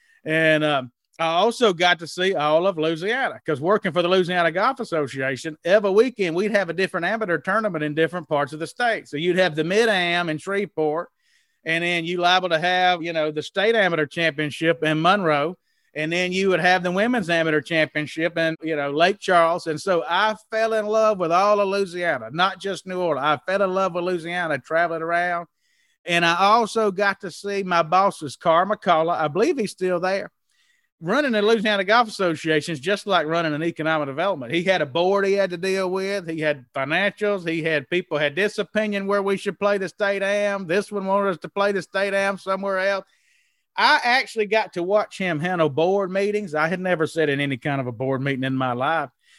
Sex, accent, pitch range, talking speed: male, American, 160-200 Hz, 210 wpm